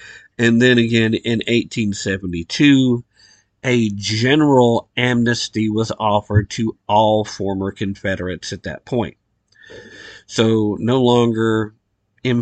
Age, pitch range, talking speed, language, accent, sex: 50-69, 100-120 Hz, 100 wpm, English, American, male